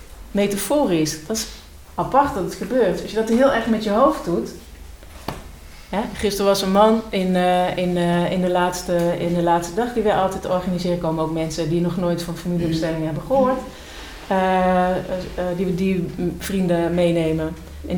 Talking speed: 170 wpm